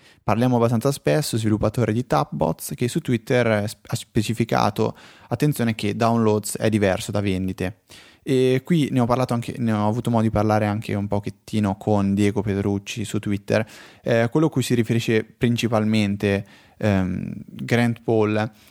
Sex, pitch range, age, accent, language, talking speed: male, 100-115 Hz, 20-39, native, Italian, 155 wpm